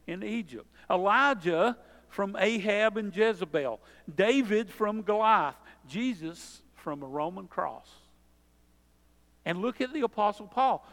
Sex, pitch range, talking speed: male, 140-210 Hz, 115 wpm